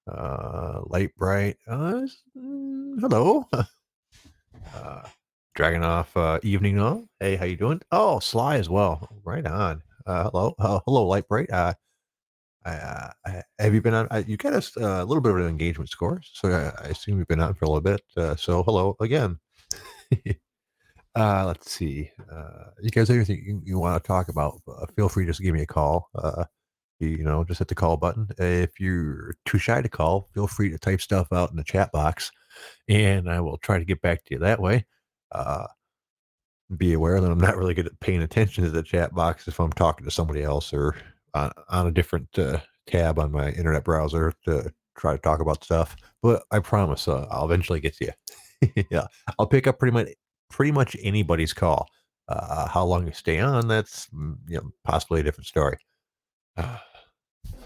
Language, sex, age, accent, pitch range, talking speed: English, male, 40-59, American, 80-105 Hz, 195 wpm